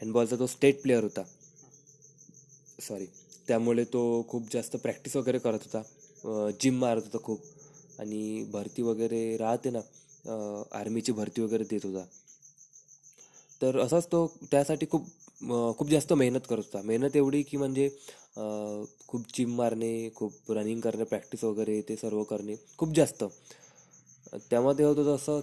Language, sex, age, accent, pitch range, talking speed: Marathi, male, 20-39, native, 115-140 Hz, 135 wpm